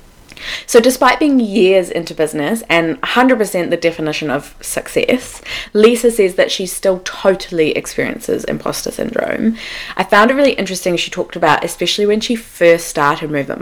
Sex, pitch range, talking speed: female, 165-230 Hz, 155 wpm